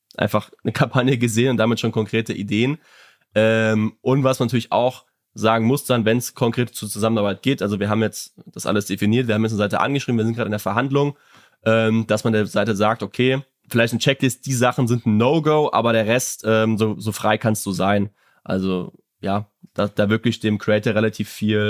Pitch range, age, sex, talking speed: 105-120 Hz, 20-39, male, 215 wpm